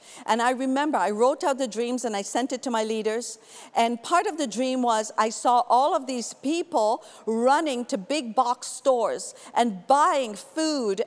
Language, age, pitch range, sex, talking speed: English, 50-69, 225-270 Hz, female, 190 wpm